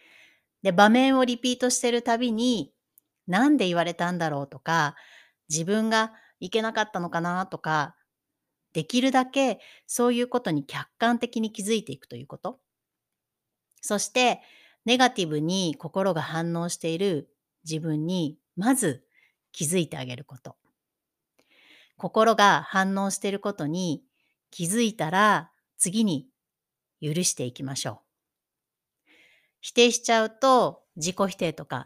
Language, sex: Japanese, female